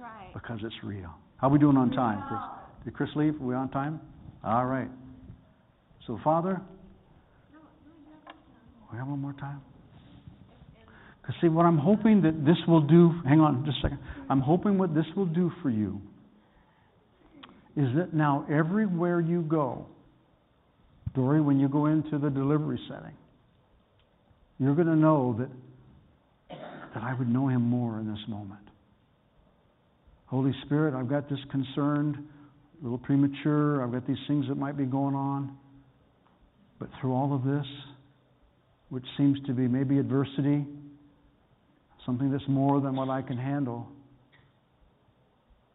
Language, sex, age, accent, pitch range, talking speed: English, male, 60-79, American, 125-150 Hz, 145 wpm